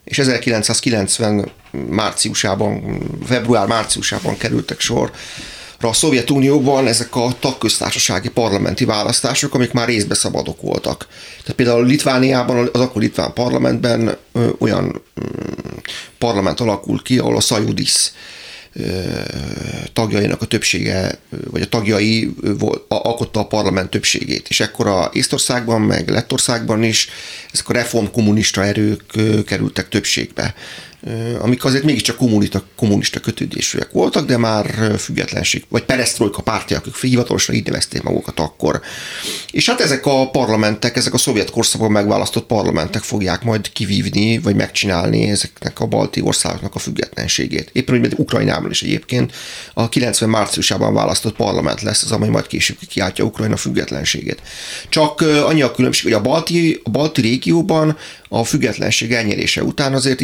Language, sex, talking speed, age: Hungarian, male, 130 wpm, 30-49